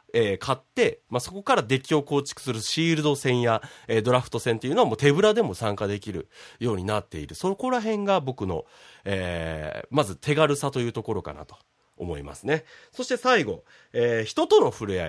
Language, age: Japanese, 30-49